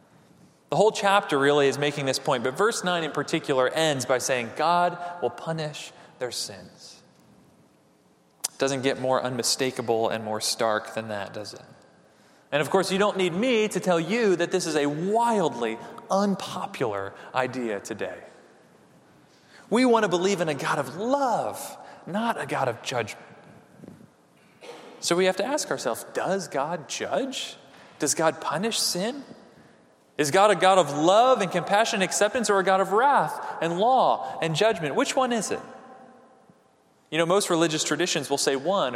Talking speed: 170 wpm